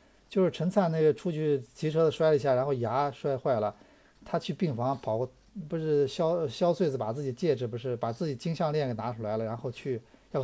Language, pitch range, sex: Chinese, 110-150 Hz, male